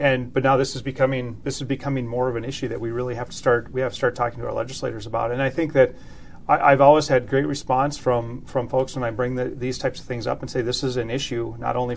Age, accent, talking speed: 40-59, American, 290 wpm